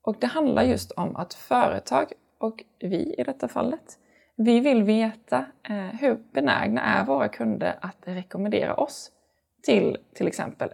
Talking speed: 145 wpm